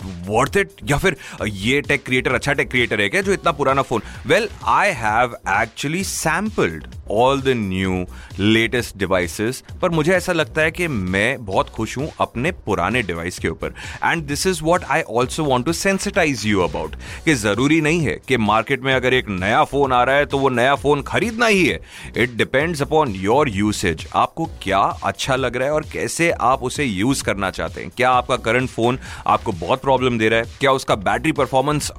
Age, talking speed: 30-49, 150 wpm